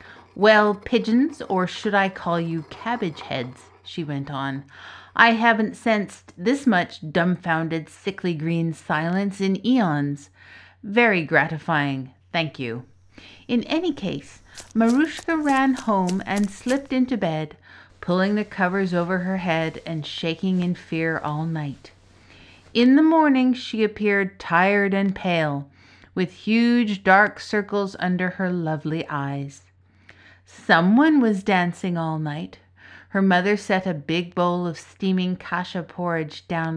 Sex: female